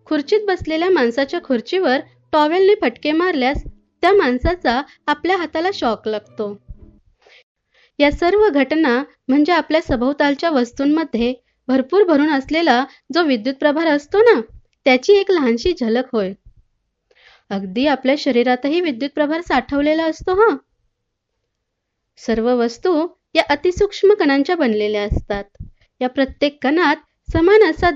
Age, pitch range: 20-39, 250-335 Hz